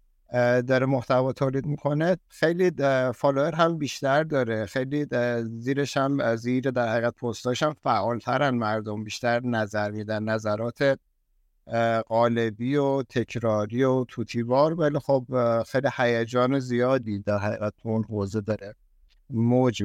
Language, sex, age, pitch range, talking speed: Persian, male, 60-79, 110-135 Hz, 120 wpm